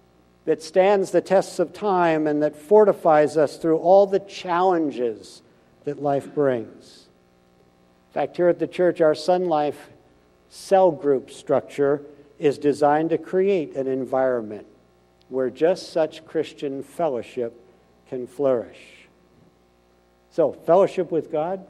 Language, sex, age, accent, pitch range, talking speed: English, male, 60-79, American, 135-185 Hz, 125 wpm